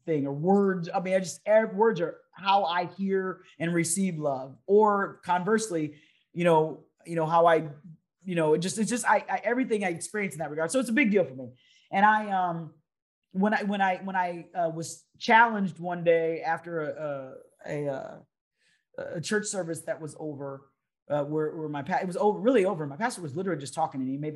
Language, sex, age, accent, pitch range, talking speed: English, male, 30-49, American, 145-185 Hz, 215 wpm